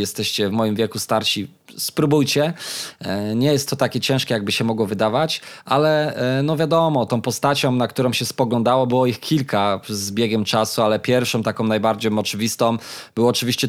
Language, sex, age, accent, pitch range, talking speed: Polish, male, 20-39, native, 110-130 Hz, 160 wpm